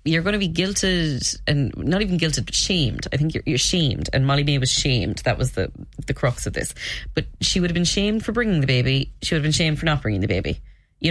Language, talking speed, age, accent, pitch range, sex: English, 265 wpm, 20-39, Irish, 130-175 Hz, female